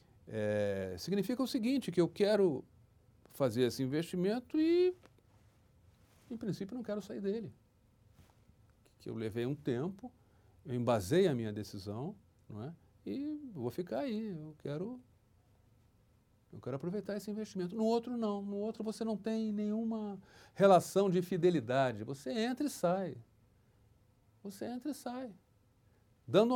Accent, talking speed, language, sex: Brazilian, 125 wpm, Portuguese, male